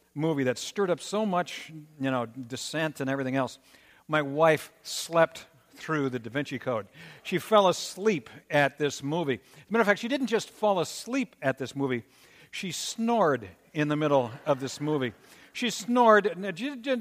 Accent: American